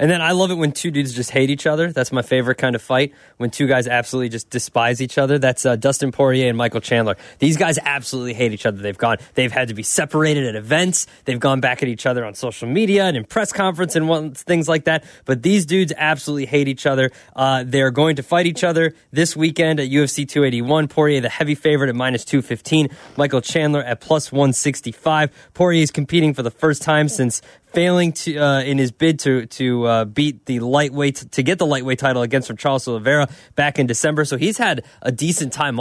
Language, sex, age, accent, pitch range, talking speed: English, male, 20-39, American, 130-155 Hz, 225 wpm